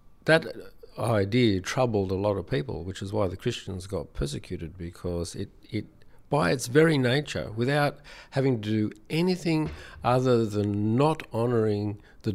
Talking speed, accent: 150 wpm, Australian